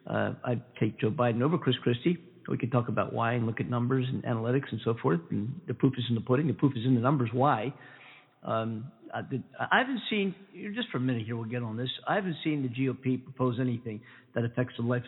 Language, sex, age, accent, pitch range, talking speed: English, male, 50-69, American, 125-155 Hz, 250 wpm